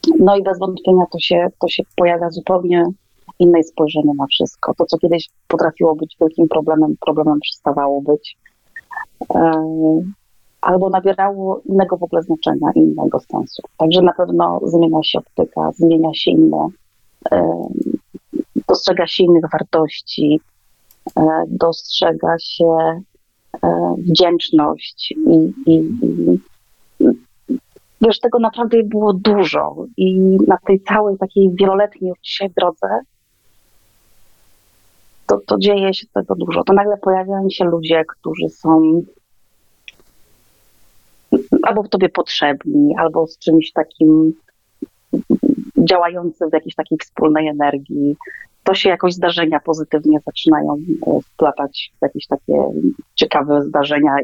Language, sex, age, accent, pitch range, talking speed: Polish, female, 30-49, native, 155-190 Hz, 115 wpm